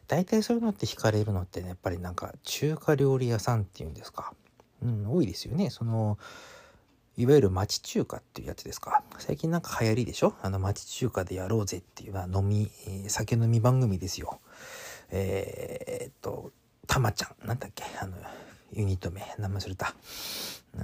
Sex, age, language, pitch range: male, 40-59, Japanese, 100-135 Hz